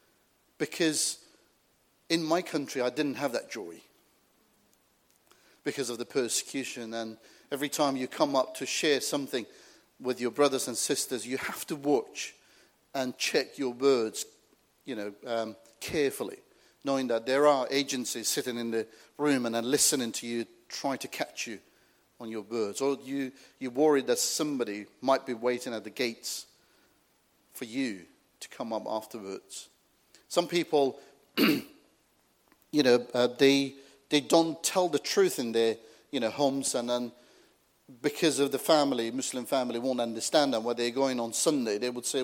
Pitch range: 120-145 Hz